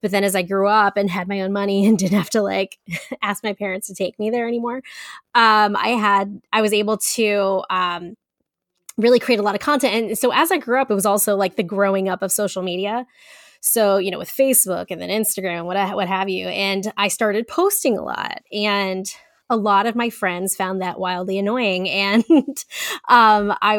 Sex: female